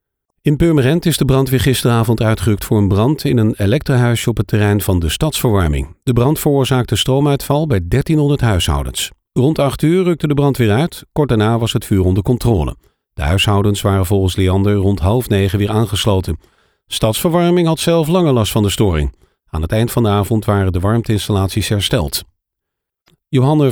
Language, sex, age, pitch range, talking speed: Dutch, male, 50-69, 100-135 Hz, 180 wpm